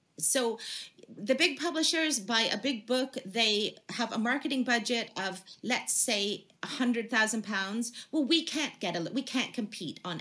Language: English